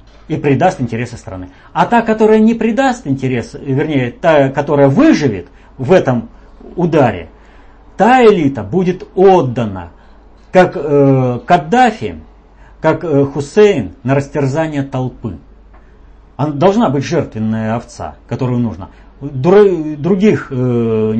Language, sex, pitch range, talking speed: Russian, male, 95-140 Hz, 110 wpm